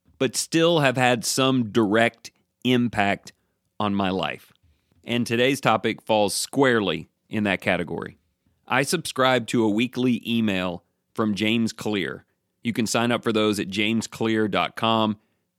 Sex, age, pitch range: male, 40-59, 105-135 Hz